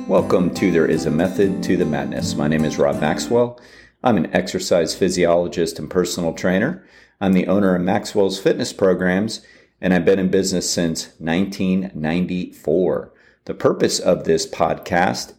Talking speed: 155 wpm